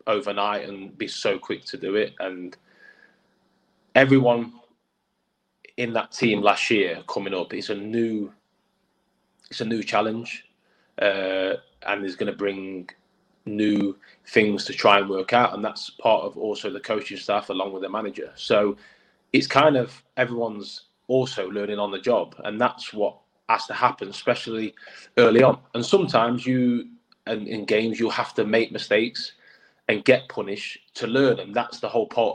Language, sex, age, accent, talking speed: English, male, 20-39, British, 165 wpm